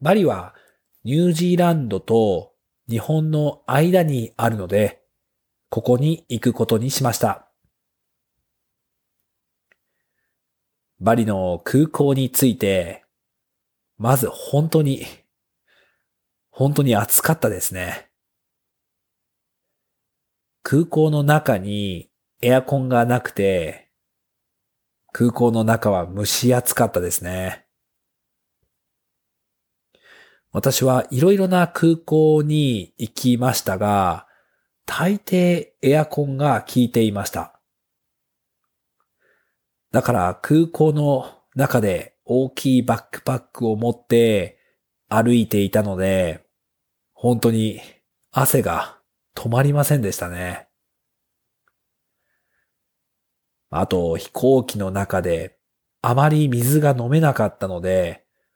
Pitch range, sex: 105-145 Hz, male